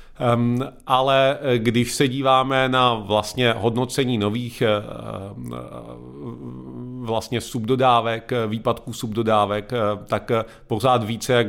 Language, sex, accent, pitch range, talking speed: Czech, male, native, 110-120 Hz, 85 wpm